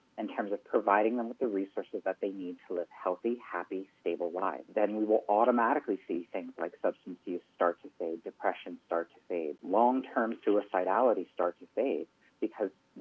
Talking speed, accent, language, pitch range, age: 180 wpm, American, English, 95-120 Hz, 40-59